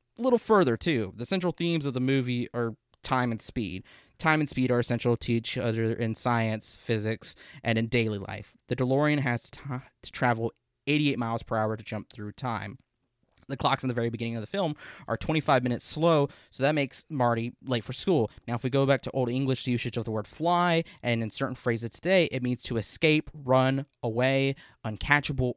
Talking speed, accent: 205 wpm, American